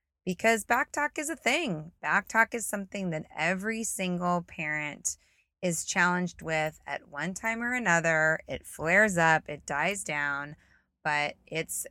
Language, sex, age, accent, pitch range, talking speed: English, female, 20-39, American, 155-195 Hz, 140 wpm